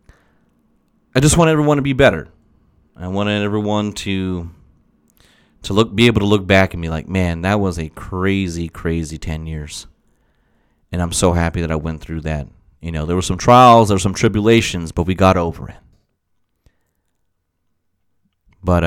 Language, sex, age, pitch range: English, male, 30-49, 85-100 Hz